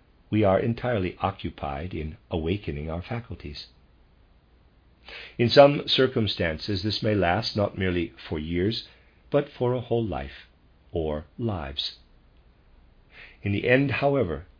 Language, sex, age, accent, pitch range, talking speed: English, male, 50-69, American, 80-115 Hz, 120 wpm